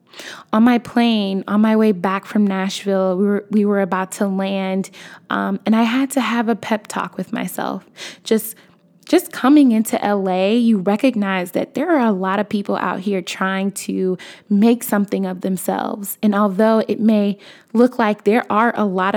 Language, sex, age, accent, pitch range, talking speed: English, female, 20-39, American, 195-235 Hz, 185 wpm